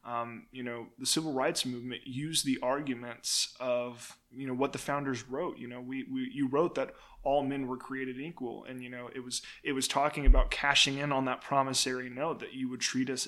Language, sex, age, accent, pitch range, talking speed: English, male, 20-39, American, 125-145 Hz, 220 wpm